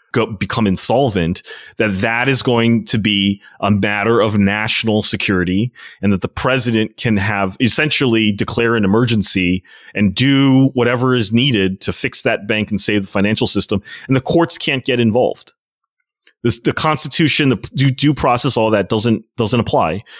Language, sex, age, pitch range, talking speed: English, male, 30-49, 100-125 Hz, 165 wpm